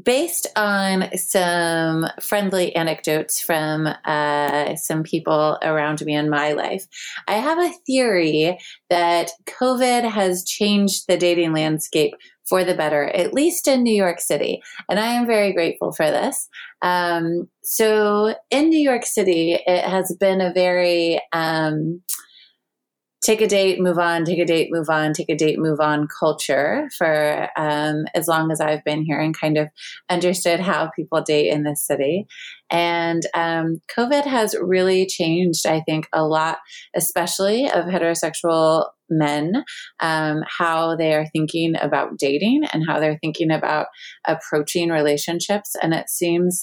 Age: 30-49